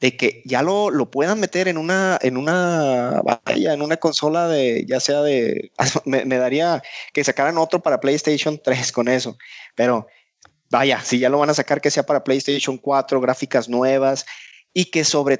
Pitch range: 125-165 Hz